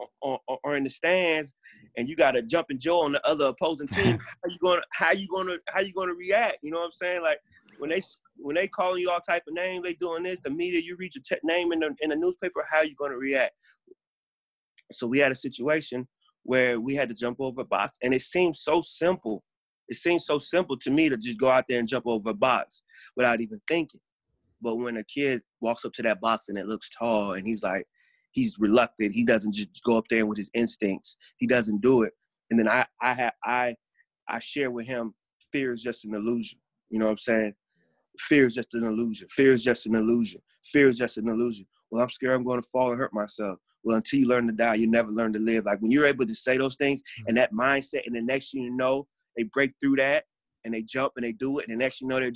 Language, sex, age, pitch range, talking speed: English, male, 30-49, 115-170 Hz, 255 wpm